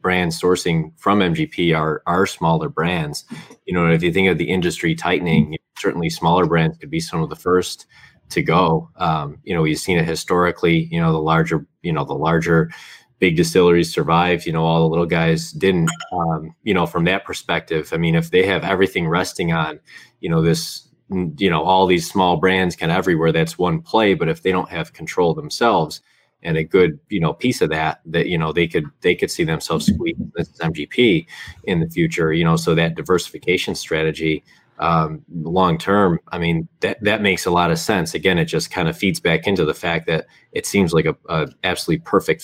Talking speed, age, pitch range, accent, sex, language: 205 wpm, 20-39, 80-95 Hz, American, male, English